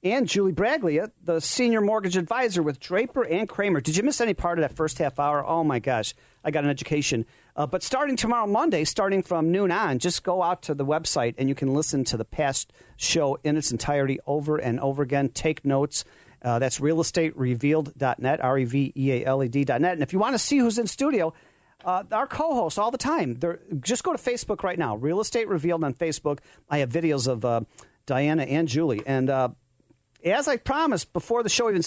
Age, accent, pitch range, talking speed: 40-59, American, 140-185 Hz, 200 wpm